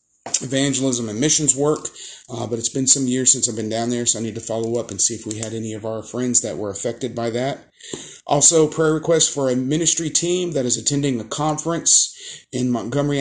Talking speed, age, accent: 225 wpm, 40-59, American